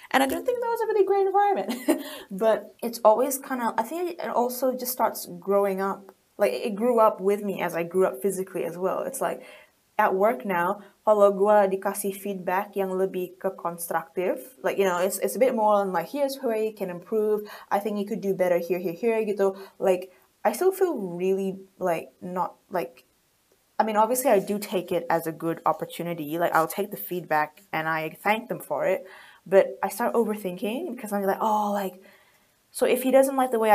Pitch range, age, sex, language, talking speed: 190-240 Hz, 20-39, female, English, 210 wpm